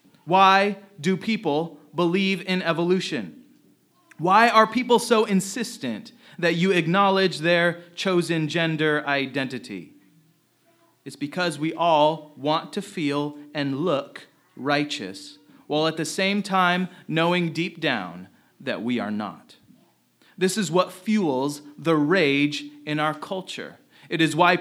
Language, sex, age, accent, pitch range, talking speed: English, male, 30-49, American, 150-195 Hz, 125 wpm